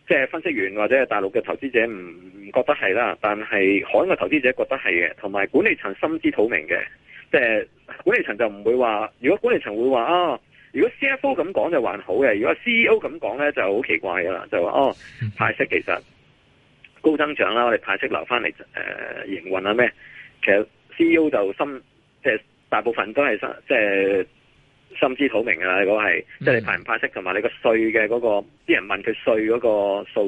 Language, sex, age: Chinese, male, 30-49